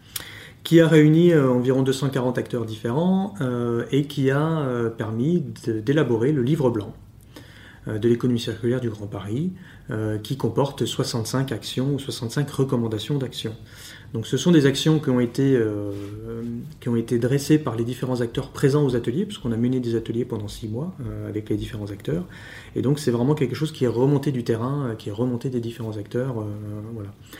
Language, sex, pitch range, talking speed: English, male, 115-145 Hz, 170 wpm